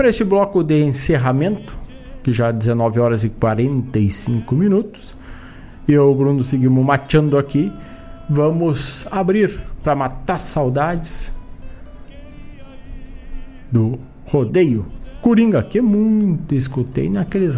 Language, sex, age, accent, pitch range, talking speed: Portuguese, male, 50-69, Brazilian, 130-185 Hz, 110 wpm